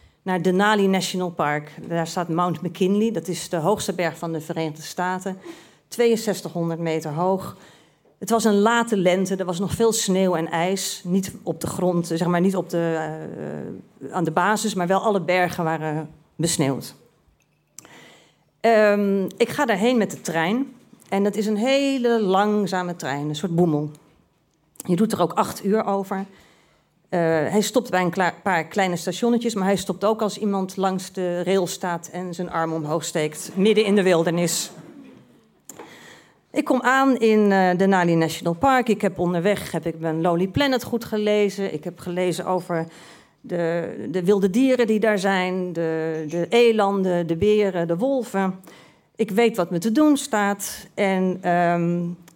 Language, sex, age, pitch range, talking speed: Dutch, female, 40-59, 170-210 Hz, 160 wpm